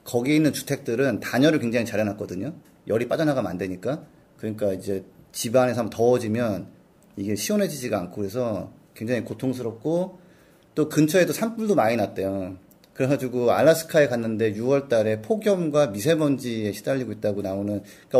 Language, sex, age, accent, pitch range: Korean, male, 30-49, native, 105-145 Hz